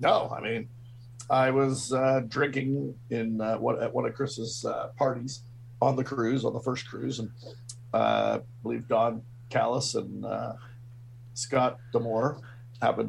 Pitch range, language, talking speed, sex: 115-125 Hz, English, 155 wpm, male